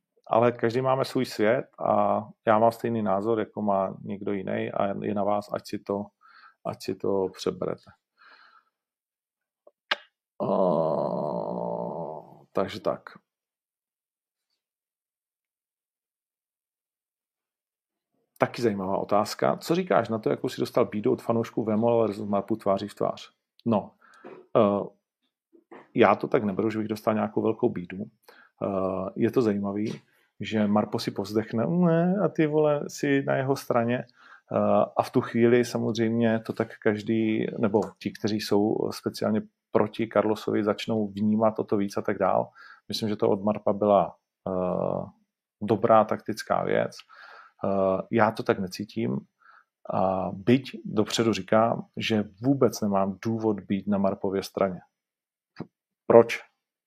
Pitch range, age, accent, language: 105-115 Hz, 40-59, native, Czech